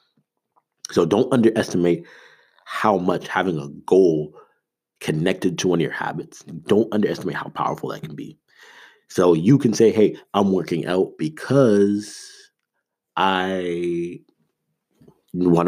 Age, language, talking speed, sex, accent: 30-49, English, 125 wpm, male, American